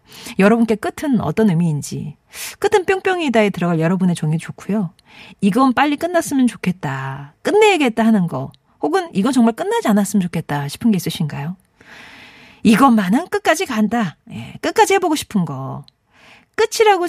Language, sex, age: Korean, female, 40-59